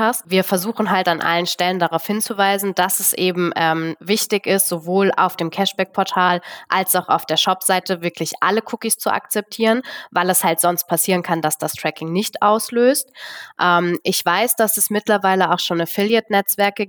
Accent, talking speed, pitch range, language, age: German, 170 wpm, 175-210 Hz, German, 20-39